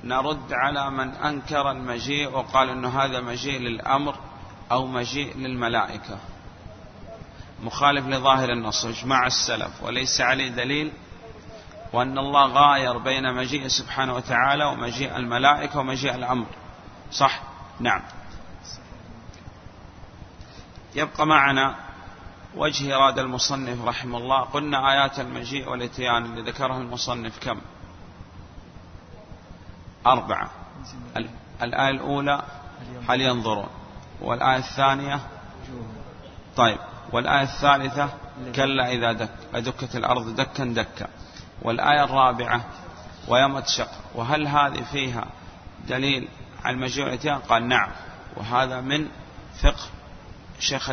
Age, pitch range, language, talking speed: 30-49, 115-140 Hz, Arabic, 95 wpm